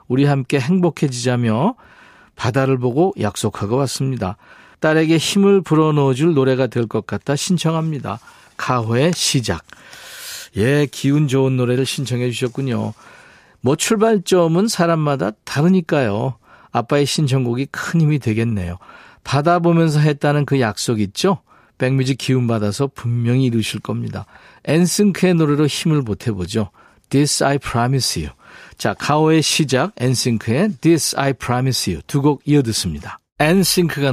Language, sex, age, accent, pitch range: Korean, male, 50-69, native, 120-155 Hz